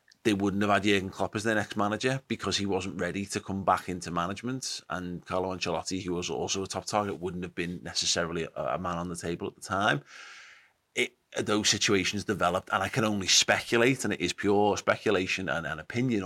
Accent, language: British, English